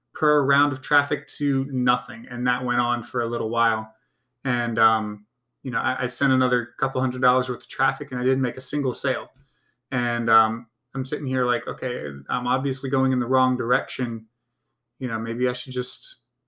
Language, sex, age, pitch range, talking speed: English, male, 20-39, 120-135 Hz, 200 wpm